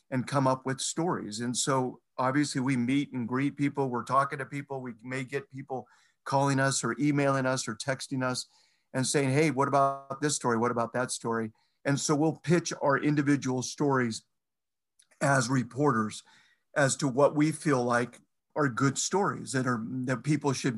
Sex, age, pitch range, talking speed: male, 50-69, 125-150 Hz, 180 wpm